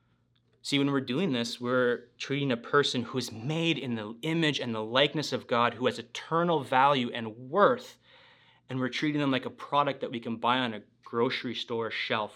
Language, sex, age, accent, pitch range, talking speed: English, male, 30-49, American, 115-140 Hz, 205 wpm